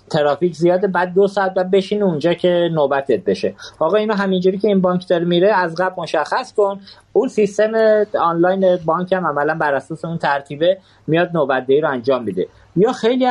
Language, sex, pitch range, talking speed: Persian, male, 150-200 Hz, 180 wpm